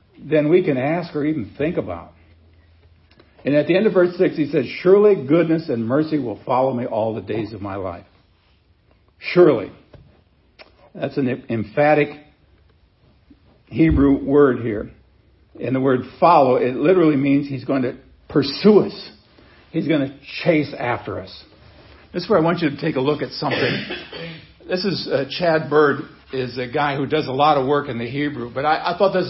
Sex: male